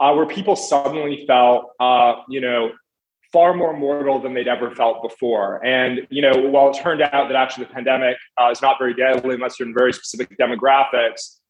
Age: 20-39